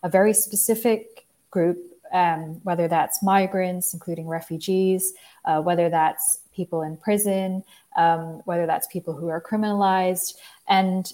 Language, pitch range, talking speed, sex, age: English, 170-195 Hz, 130 wpm, female, 20-39